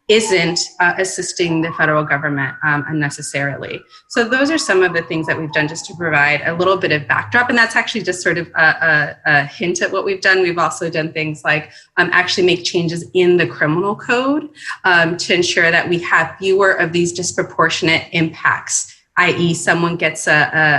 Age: 20-39